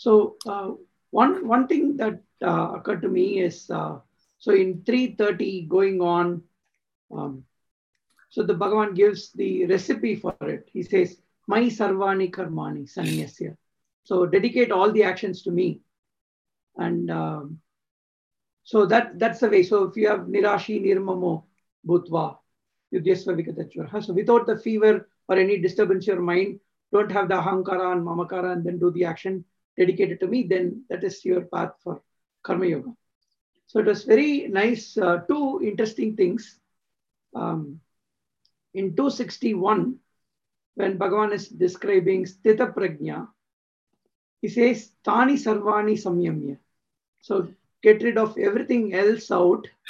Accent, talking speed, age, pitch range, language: Indian, 140 wpm, 50-69, 185-220 Hz, English